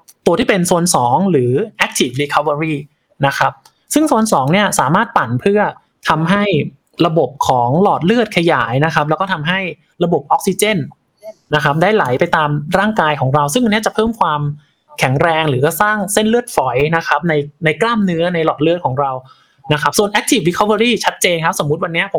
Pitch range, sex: 145-205 Hz, male